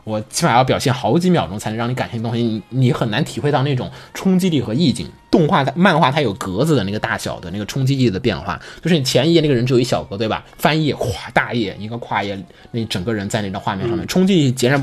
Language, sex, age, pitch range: Chinese, male, 20-39, 110-155 Hz